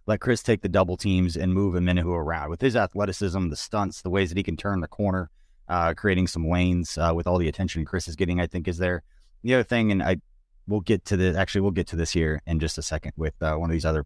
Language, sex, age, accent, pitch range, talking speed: English, male, 30-49, American, 90-115 Hz, 280 wpm